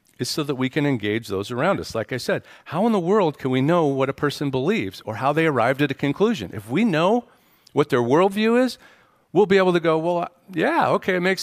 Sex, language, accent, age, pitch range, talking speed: male, English, American, 40-59, 115-175 Hz, 245 wpm